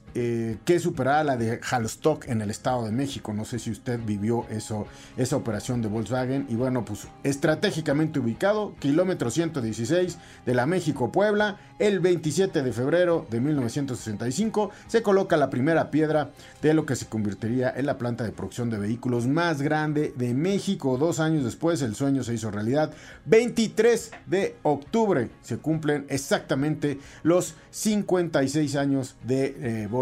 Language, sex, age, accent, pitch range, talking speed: Spanish, male, 50-69, Mexican, 120-165 Hz, 155 wpm